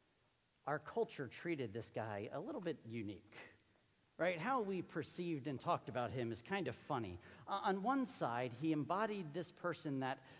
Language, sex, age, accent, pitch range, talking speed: English, male, 40-59, American, 135-175 Hz, 175 wpm